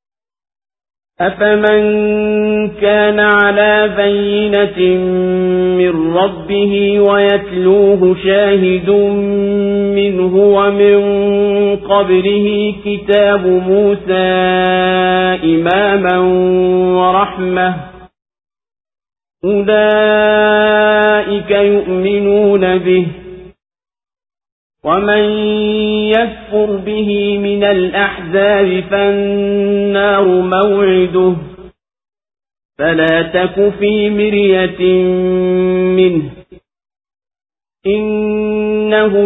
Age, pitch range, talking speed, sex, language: 50-69, 185-205 Hz, 50 wpm, male, Swahili